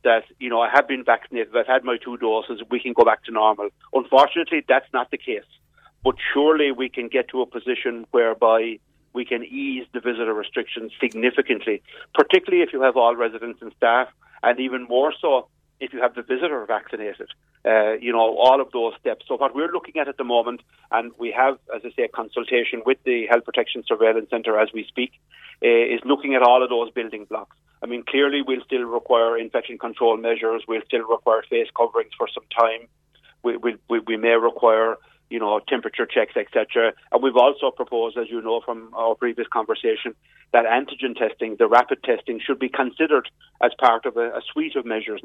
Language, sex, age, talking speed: English, male, 40-59, 205 wpm